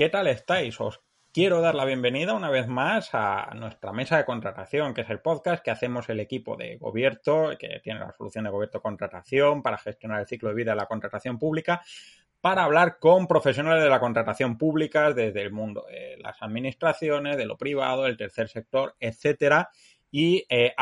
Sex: male